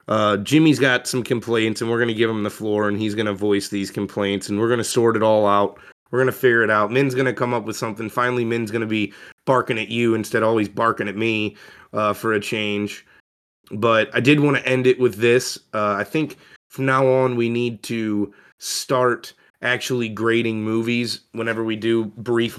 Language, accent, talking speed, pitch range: English, American, 225 wpm, 105-120 Hz